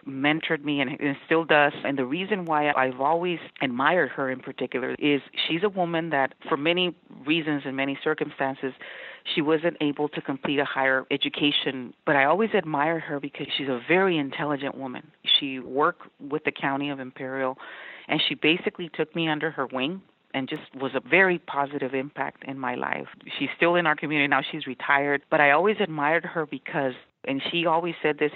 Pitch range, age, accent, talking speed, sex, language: 135-160 Hz, 40-59, American, 190 wpm, female, English